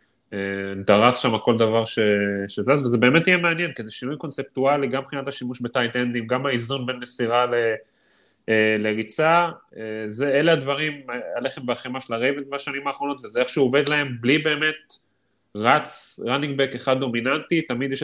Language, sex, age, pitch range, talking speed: Hebrew, male, 30-49, 120-145 Hz, 160 wpm